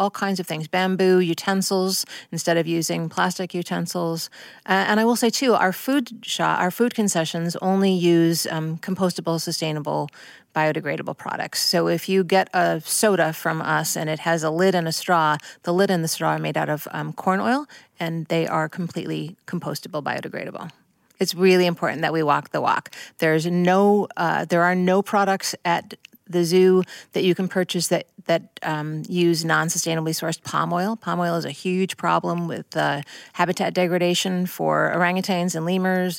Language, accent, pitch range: English, American, 165-190 Hz